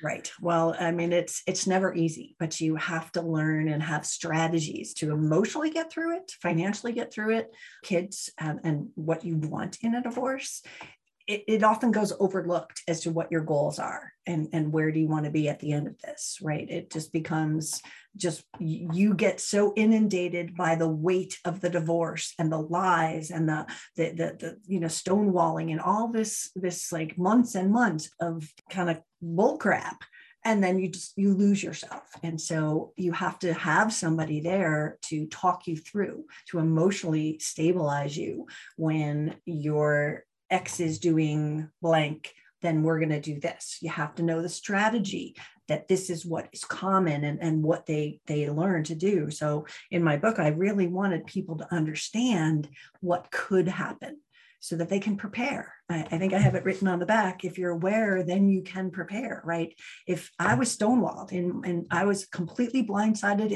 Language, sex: English, female